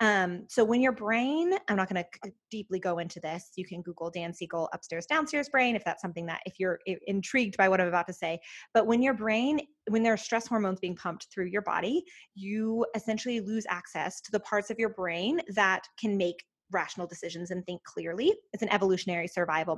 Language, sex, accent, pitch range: English, female, American, 180-230 Hz